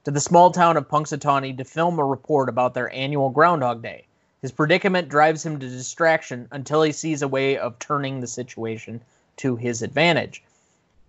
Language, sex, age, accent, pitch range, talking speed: English, male, 20-39, American, 130-170 Hz, 180 wpm